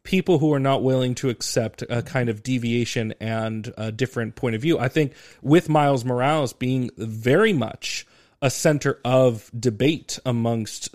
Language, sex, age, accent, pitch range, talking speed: English, male, 30-49, American, 115-135 Hz, 165 wpm